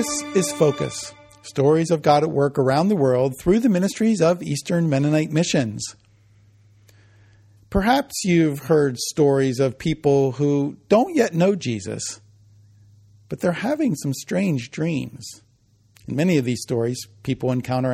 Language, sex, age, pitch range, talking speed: English, male, 50-69, 115-155 Hz, 140 wpm